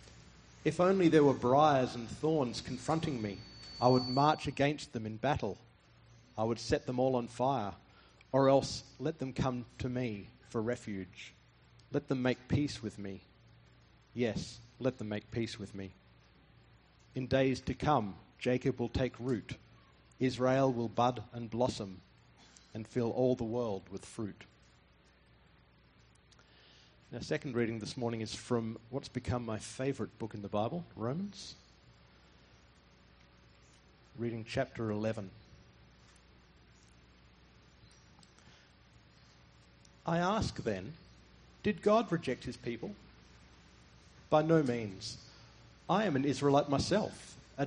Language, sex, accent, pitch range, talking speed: English, male, Australian, 95-130 Hz, 125 wpm